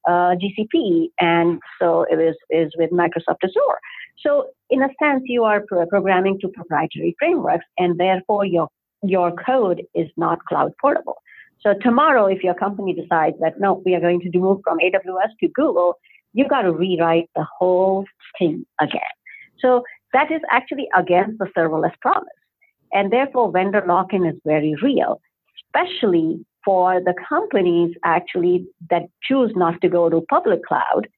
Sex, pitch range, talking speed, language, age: female, 170-225 Hz, 160 wpm, English, 50-69